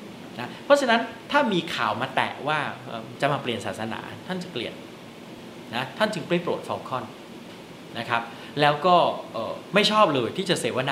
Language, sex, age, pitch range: Thai, male, 30-49, 120-180 Hz